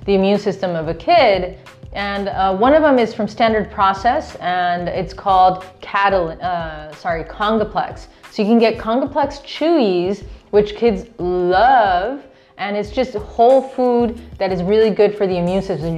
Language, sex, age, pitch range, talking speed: English, female, 20-39, 175-215 Hz, 170 wpm